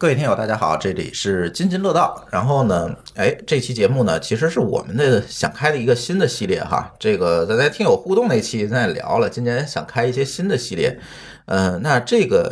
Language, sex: Chinese, male